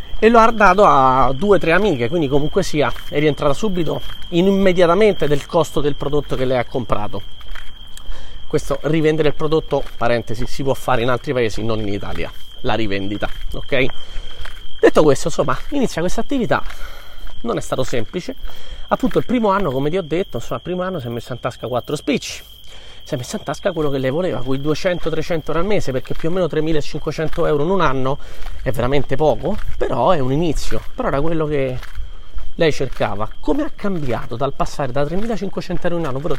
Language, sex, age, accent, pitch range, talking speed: Italian, male, 30-49, native, 130-180 Hz, 195 wpm